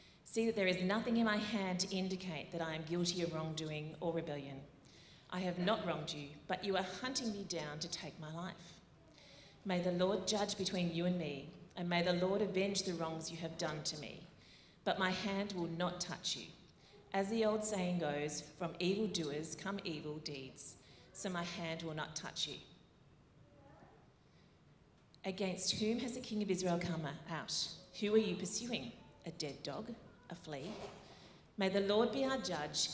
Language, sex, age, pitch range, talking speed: English, female, 40-59, 160-200 Hz, 185 wpm